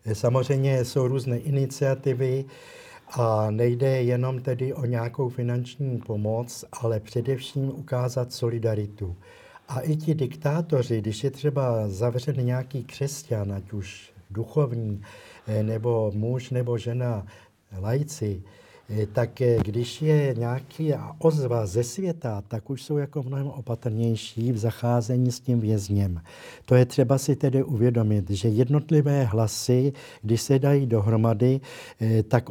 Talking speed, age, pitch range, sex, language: 120 wpm, 60-79, 115-135 Hz, male, Slovak